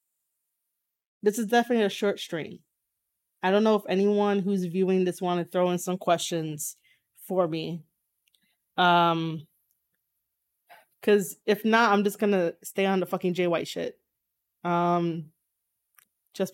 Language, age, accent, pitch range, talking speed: English, 20-39, American, 175-225 Hz, 140 wpm